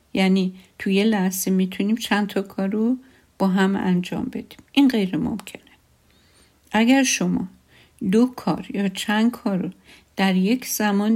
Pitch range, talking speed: 185-220 Hz, 135 wpm